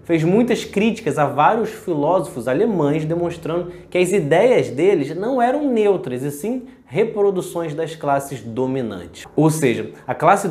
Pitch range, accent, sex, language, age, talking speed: 140-205 Hz, Brazilian, male, Portuguese, 20-39, 145 wpm